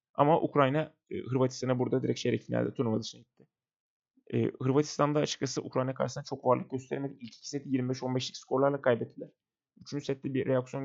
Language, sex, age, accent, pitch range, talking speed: Turkish, male, 30-49, native, 120-150 Hz, 150 wpm